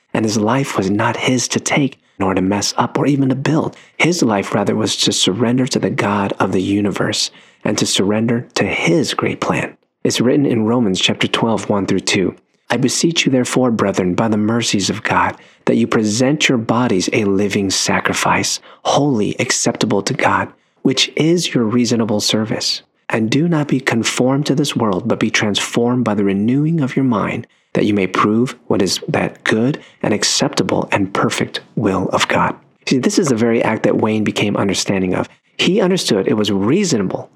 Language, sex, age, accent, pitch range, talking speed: English, male, 40-59, American, 105-130 Hz, 190 wpm